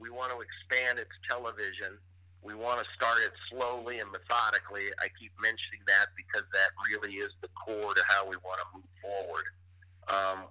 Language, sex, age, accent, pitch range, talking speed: English, male, 50-69, American, 90-100 Hz, 185 wpm